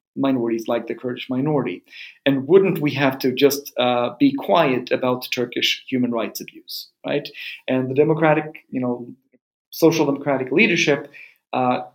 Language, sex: English, male